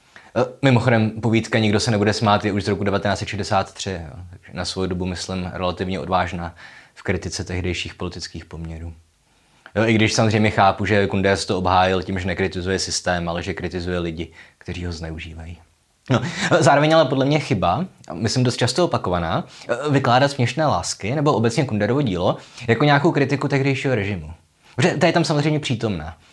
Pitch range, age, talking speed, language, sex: 90-125 Hz, 20-39, 160 wpm, Czech, male